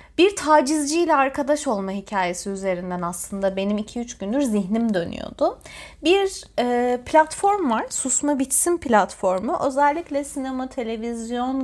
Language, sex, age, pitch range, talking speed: Turkish, female, 30-49, 220-290 Hz, 110 wpm